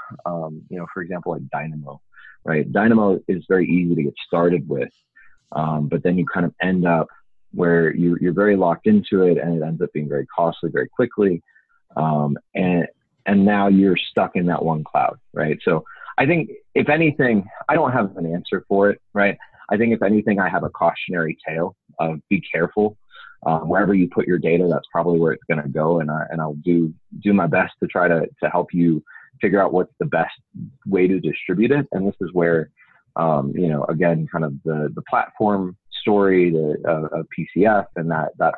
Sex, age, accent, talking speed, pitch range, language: male, 30-49, American, 205 wpm, 75-95 Hz, English